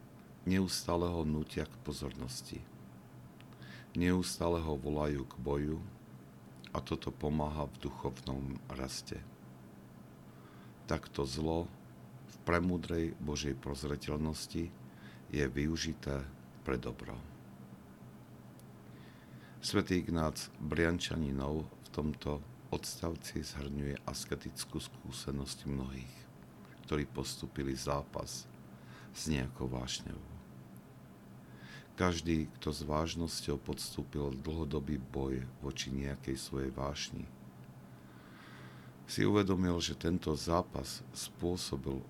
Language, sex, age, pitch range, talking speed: Slovak, male, 60-79, 65-75 Hz, 85 wpm